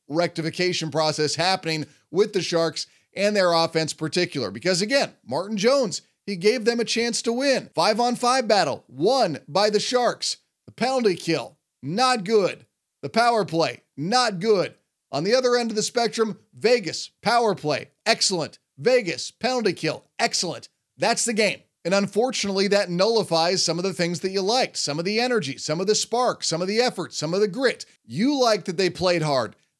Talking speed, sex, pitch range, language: 180 wpm, male, 165-215 Hz, English